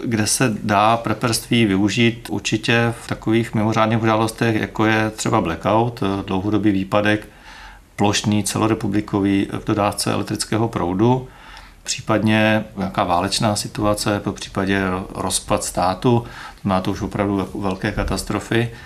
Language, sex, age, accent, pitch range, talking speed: Czech, male, 40-59, native, 100-110 Hz, 110 wpm